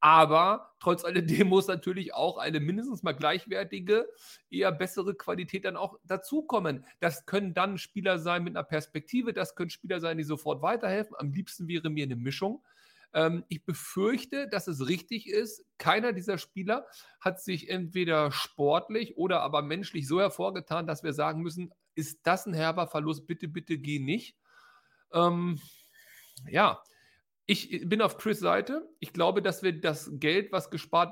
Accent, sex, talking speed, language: German, male, 160 wpm, German